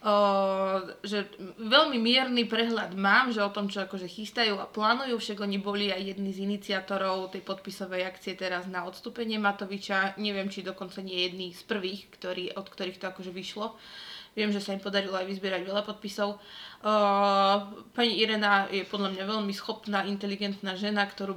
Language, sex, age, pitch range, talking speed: Slovak, female, 20-39, 190-225 Hz, 170 wpm